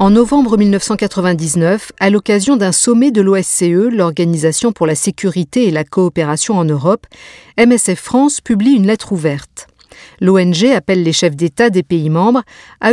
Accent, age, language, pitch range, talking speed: French, 50-69, French, 170-230 Hz, 155 wpm